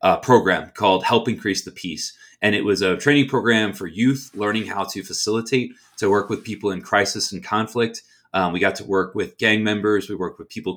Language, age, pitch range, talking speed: English, 30-49, 100-115 Hz, 215 wpm